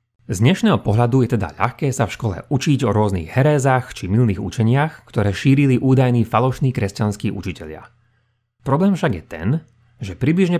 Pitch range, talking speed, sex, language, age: 110-135 Hz, 160 wpm, male, Slovak, 30-49